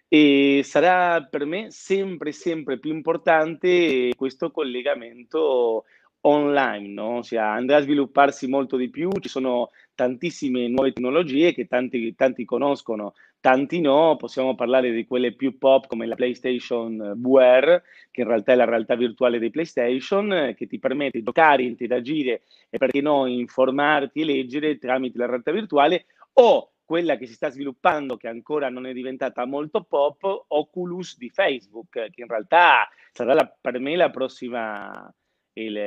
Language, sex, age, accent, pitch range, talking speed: Italian, male, 30-49, native, 125-150 Hz, 150 wpm